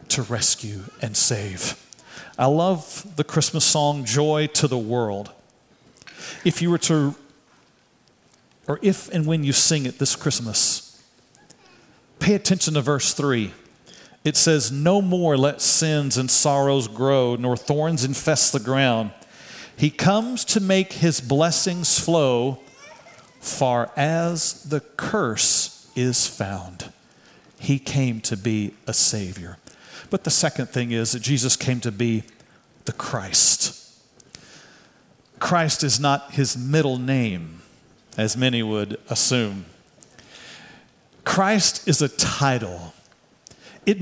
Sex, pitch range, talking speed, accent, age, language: male, 120-160 Hz, 125 wpm, American, 40-59, English